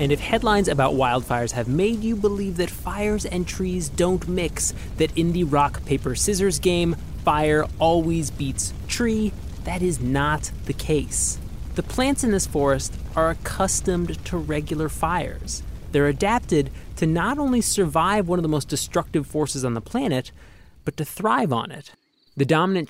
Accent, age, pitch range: American, 20-39, 135-180 Hz